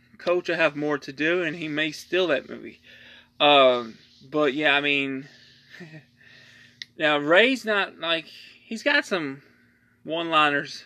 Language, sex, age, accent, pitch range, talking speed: English, male, 20-39, American, 130-170 Hz, 140 wpm